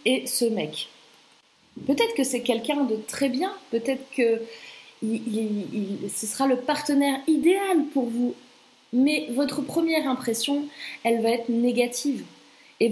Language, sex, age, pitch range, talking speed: French, female, 30-49, 220-280 Hz, 130 wpm